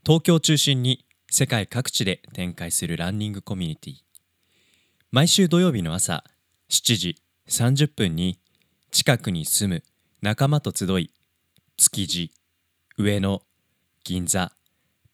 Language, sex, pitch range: Japanese, male, 90-140 Hz